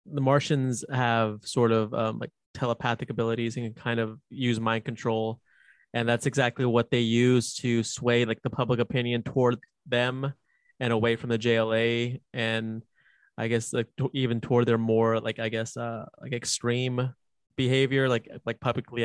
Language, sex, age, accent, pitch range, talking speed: English, male, 20-39, American, 115-135 Hz, 170 wpm